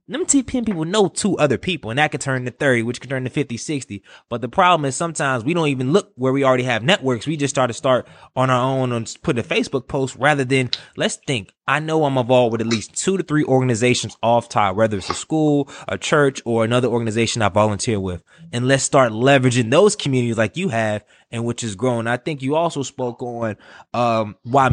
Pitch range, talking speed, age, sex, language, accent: 120-155 Hz, 235 wpm, 20-39, male, English, American